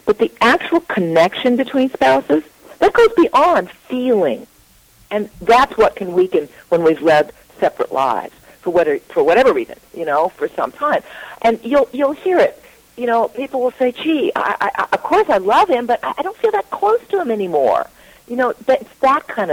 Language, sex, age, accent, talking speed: English, female, 50-69, American, 195 wpm